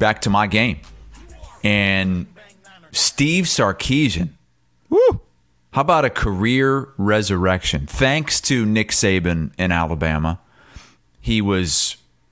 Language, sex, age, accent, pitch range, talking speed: English, male, 30-49, American, 85-115 Hz, 100 wpm